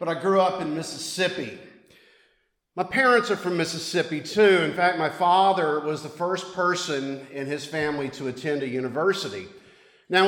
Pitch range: 140-185 Hz